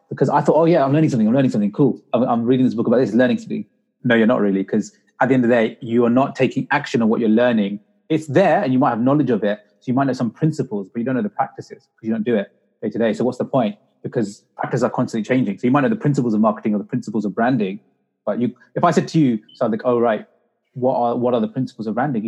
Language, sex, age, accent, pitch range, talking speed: English, male, 30-49, British, 110-135 Hz, 300 wpm